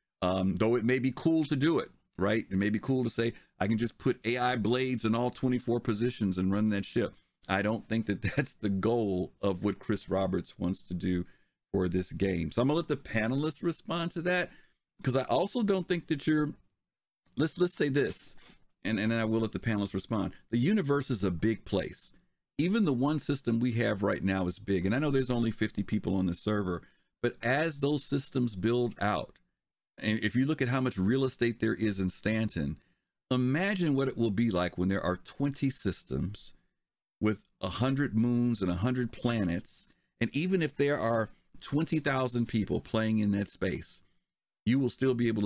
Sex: male